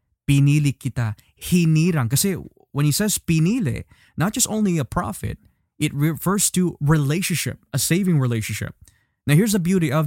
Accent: native